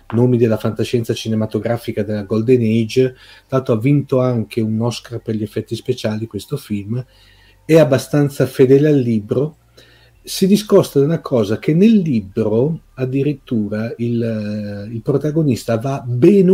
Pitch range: 110-130 Hz